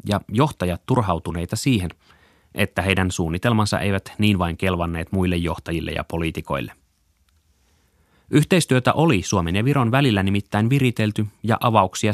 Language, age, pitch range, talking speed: Finnish, 30-49, 85-115 Hz, 125 wpm